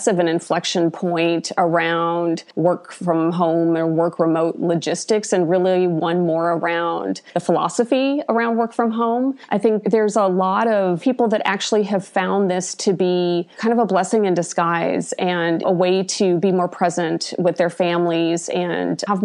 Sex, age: female, 30-49